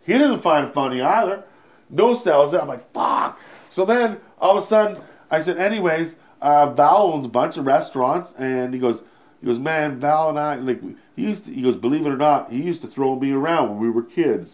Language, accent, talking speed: English, American, 235 wpm